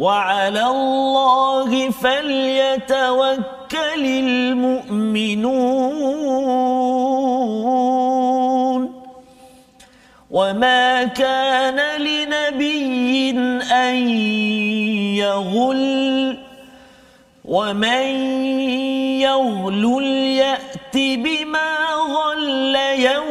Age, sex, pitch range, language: 40-59, male, 250-270 Hz, Malayalam